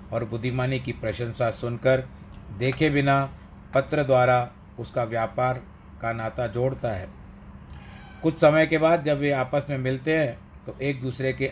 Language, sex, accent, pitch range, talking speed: Hindi, male, native, 110-140 Hz, 150 wpm